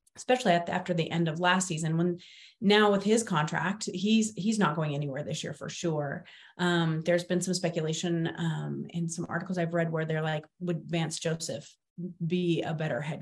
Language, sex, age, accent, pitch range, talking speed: English, female, 30-49, American, 165-210 Hz, 200 wpm